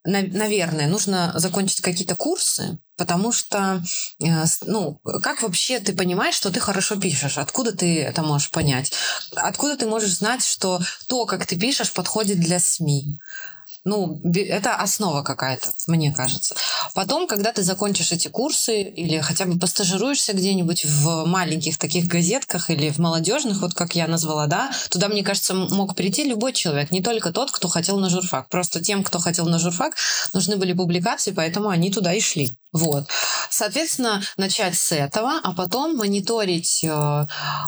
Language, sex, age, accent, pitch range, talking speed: Russian, female, 20-39, native, 170-210 Hz, 155 wpm